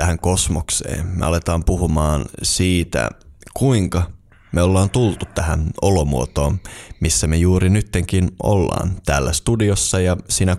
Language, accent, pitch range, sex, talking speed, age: Finnish, native, 85-100 Hz, male, 120 wpm, 20-39